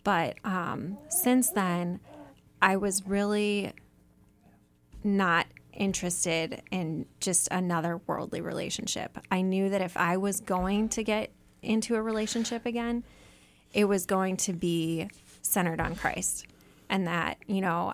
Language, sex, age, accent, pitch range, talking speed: English, female, 20-39, American, 175-205 Hz, 130 wpm